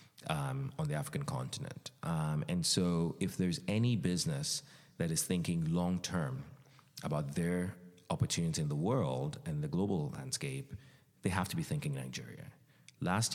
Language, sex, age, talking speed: English, male, 30-49, 150 wpm